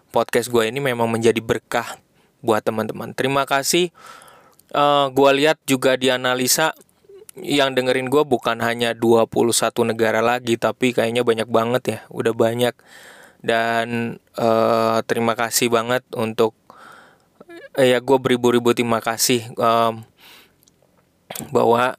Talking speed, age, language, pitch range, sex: 125 wpm, 20-39, Indonesian, 115-135 Hz, male